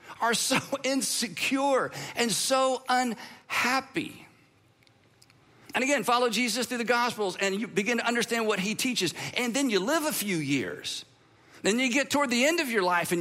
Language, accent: English, American